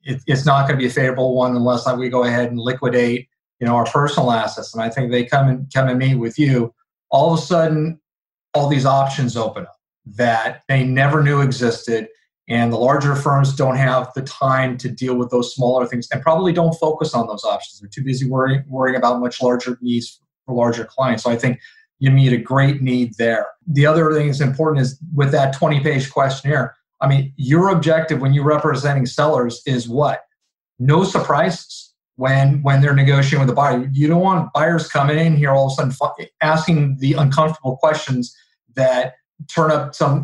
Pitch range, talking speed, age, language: 125-155 Hz, 200 wpm, 40-59, English